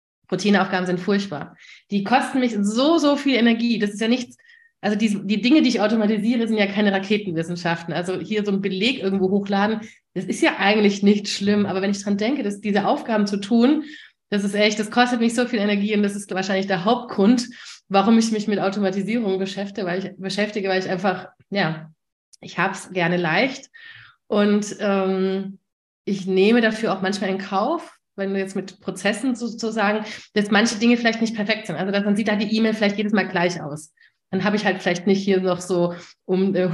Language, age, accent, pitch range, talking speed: German, 30-49, German, 190-225 Hz, 205 wpm